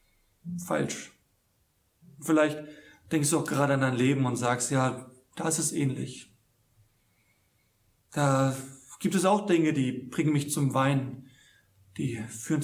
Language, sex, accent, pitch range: German, male, German, 110-160 Hz